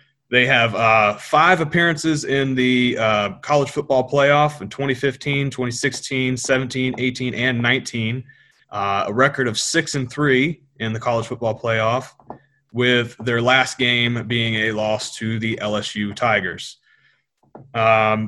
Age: 30-49